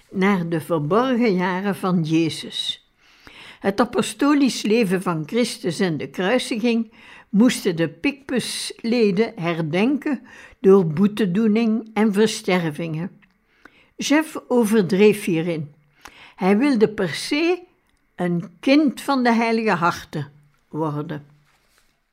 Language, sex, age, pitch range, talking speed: Dutch, female, 60-79, 185-245 Hz, 100 wpm